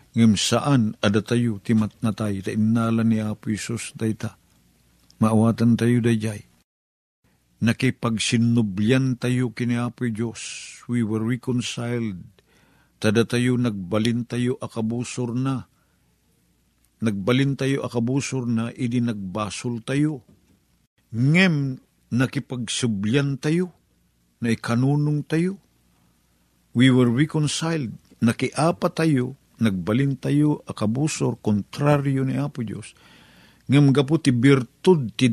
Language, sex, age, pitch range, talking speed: Filipino, male, 50-69, 110-140 Hz, 95 wpm